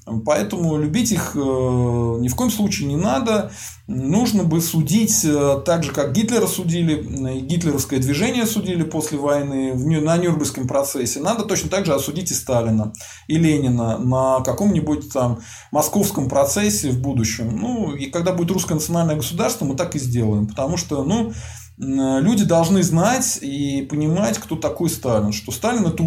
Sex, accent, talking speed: male, native, 155 wpm